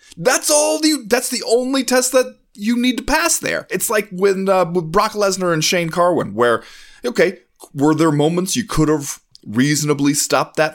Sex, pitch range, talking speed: male, 115-190 Hz, 190 wpm